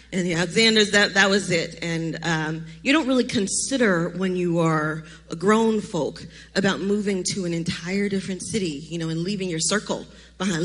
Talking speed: 185 wpm